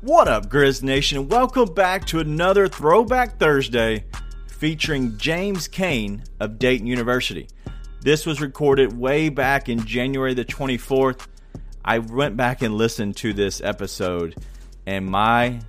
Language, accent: English, American